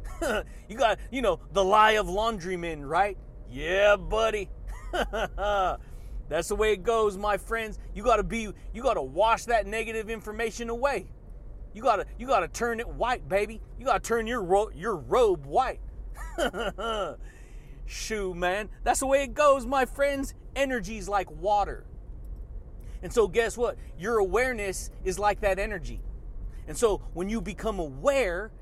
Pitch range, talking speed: 190-245 Hz, 165 wpm